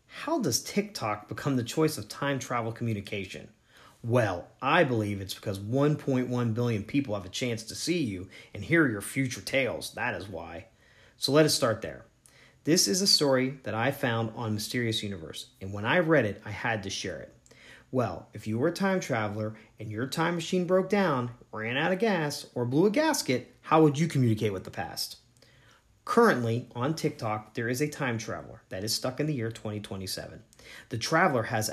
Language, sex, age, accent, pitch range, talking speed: English, male, 40-59, American, 110-150 Hz, 195 wpm